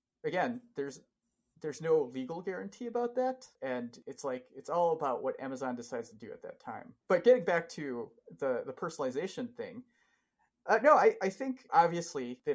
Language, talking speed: English, 175 wpm